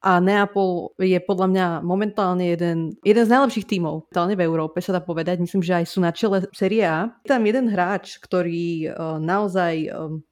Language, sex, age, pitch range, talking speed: Slovak, female, 30-49, 175-215 Hz, 190 wpm